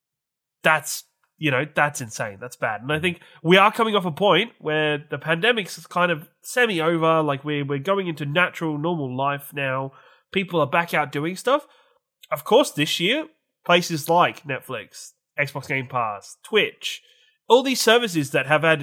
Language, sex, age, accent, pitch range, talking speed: English, male, 20-39, Australian, 140-190 Hz, 170 wpm